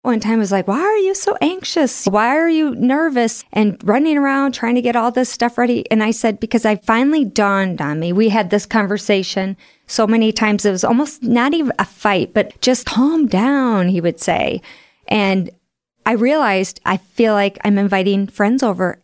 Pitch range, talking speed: 185-235 Hz, 200 wpm